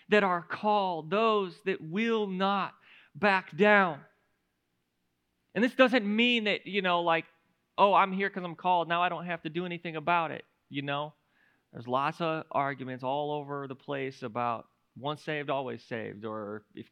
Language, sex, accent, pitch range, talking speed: English, male, American, 165-240 Hz, 175 wpm